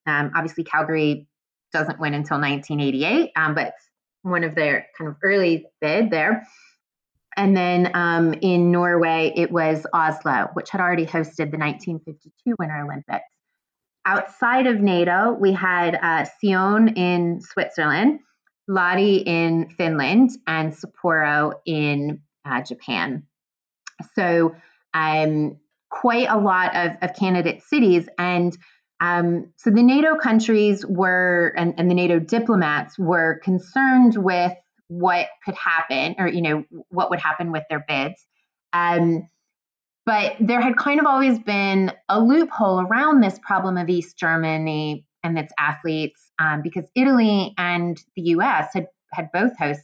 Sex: female